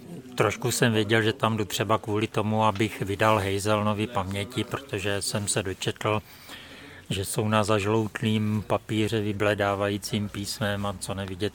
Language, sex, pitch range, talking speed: Czech, male, 95-115 Hz, 140 wpm